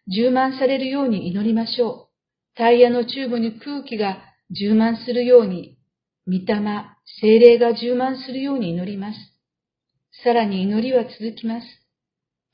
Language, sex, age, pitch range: Japanese, female, 50-69, 205-250 Hz